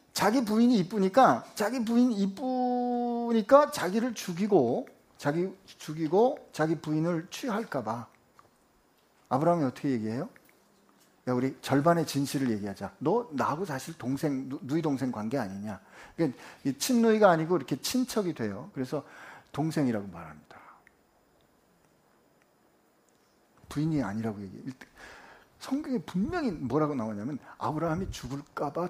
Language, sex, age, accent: Korean, male, 50-69, native